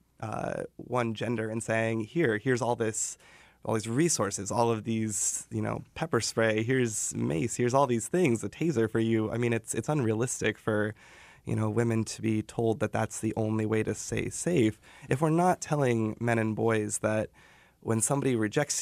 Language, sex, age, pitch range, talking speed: English, male, 20-39, 110-120 Hz, 190 wpm